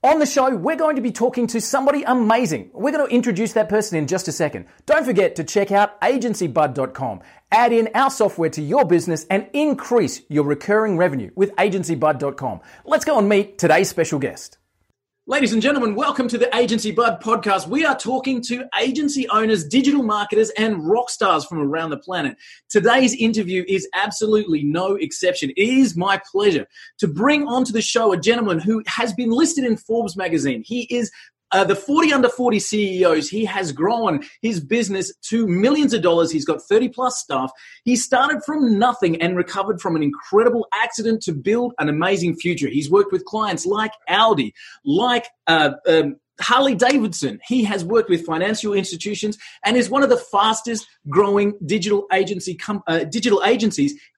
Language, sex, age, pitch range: English, male, 30-49, 185-250 Hz